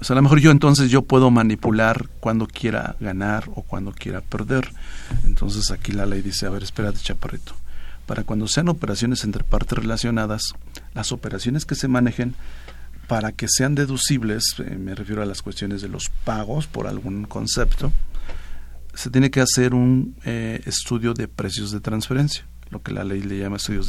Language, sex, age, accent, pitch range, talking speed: Spanish, male, 50-69, Mexican, 100-120 Hz, 180 wpm